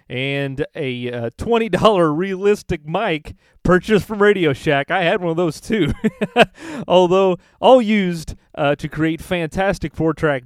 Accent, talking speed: American, 140 wpm